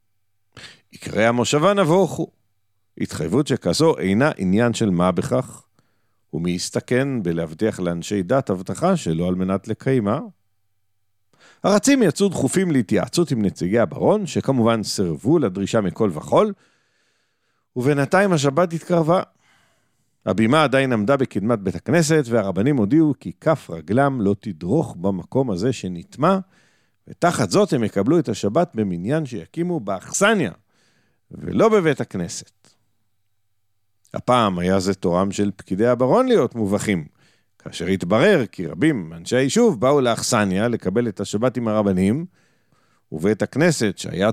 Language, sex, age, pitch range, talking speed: Hebrew, male, 50-69, 100-150 Hz, 120 wpm